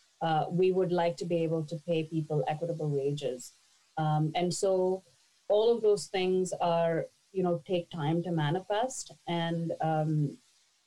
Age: 30-49